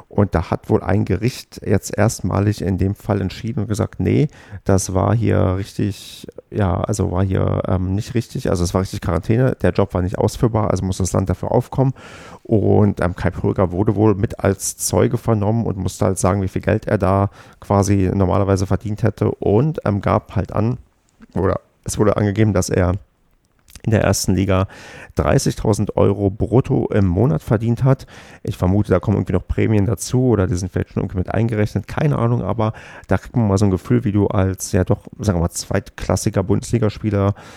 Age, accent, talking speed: 40-59, German, 195 wpm